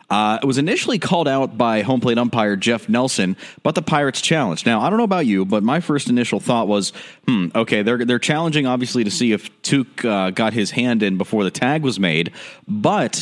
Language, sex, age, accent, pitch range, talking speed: English, male, 30-49, American, 110-145 Hz, 220 wpm